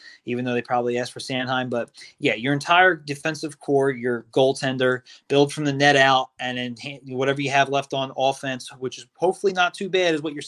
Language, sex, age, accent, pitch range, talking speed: English, male, 30-49, American, 140-195 Hz, 210 wpm